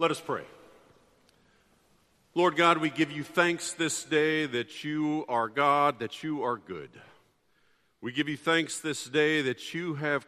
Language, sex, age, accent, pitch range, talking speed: English, male, 50-69, American, 120-155 Hz, 165 wpm